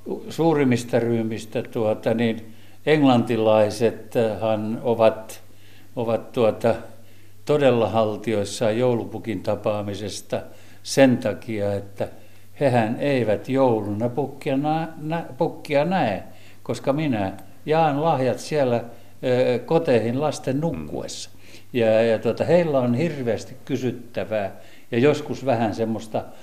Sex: male